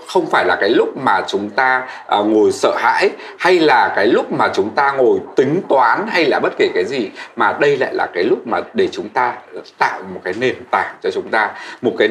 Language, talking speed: Vietnamese, 235 wpm